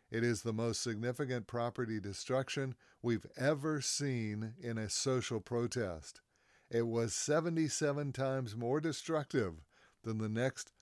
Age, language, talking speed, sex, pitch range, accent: 60-79, English, 130 wpm, male, 110-135 Hz, American